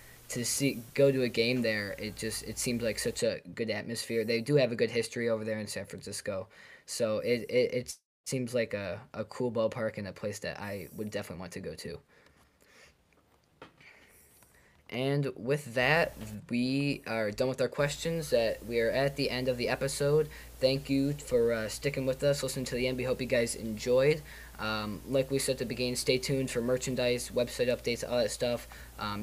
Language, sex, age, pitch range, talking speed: English, male, 20-39, 110-130 Hz, 205 wpm